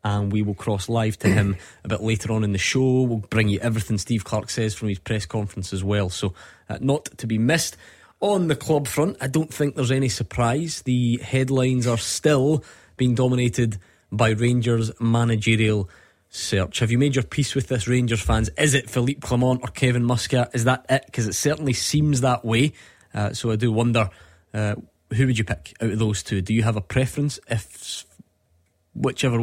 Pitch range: 105-130 Hz